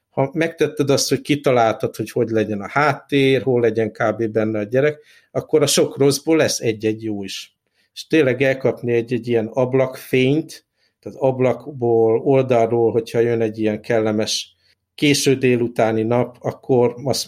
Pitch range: 115-135 Hz